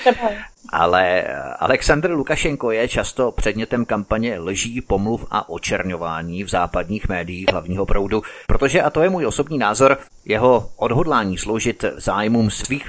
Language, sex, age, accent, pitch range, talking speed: Czech, male, 30-49, native, 100-115 Hz, 130 wpm